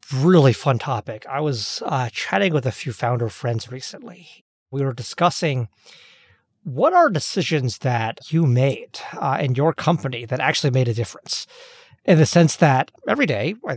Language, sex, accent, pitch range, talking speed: English, male, American, 130-185 Hz, 165 wpm